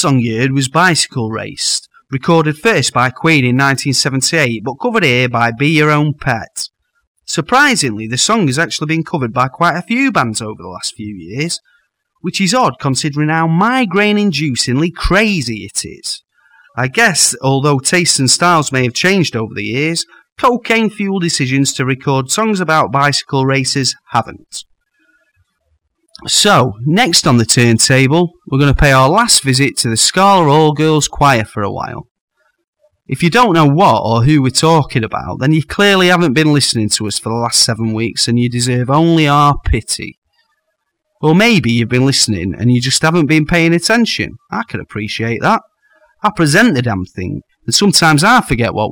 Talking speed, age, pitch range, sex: 175 wpm, 30-49, 125-175 Hz, male